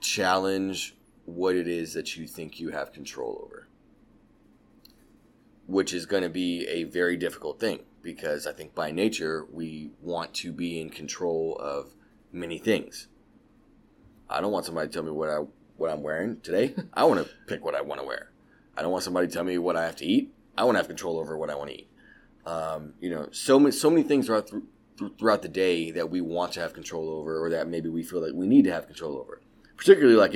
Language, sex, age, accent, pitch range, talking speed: English, male, 30-49, American, 80-105 Hz, 225 wpm